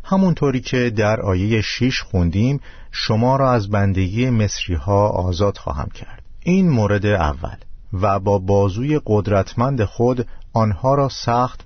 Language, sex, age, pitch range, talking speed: Persian, male, 50-69, 90-115 Hz, 135 wpm